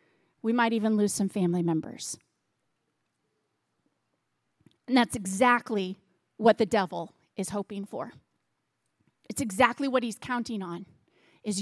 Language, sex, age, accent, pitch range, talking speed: English, female, 30-49, American, 220-295 Hz, 120 wpm